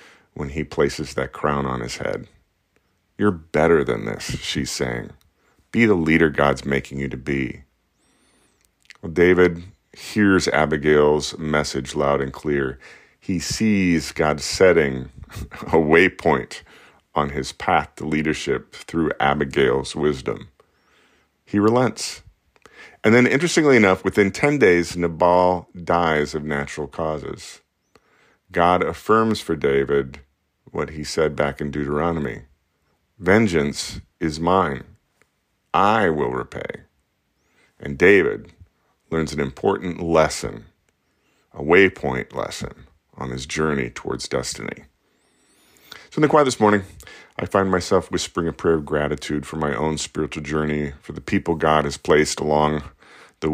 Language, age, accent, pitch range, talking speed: English, 40-59, American, 75-90 Hz, 130 wpm